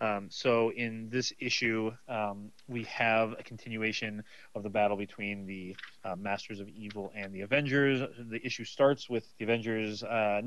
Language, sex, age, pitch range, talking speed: English, male, 30-49, 100-120 Hz, 165 wpm